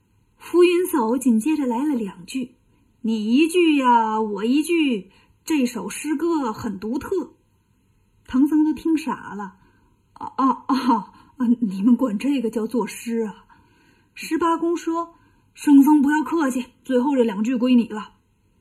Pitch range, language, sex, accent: 225-295 Hz, Chinese, female, native